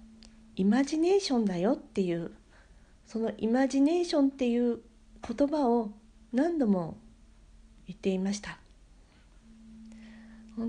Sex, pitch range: female, 205-245 Hz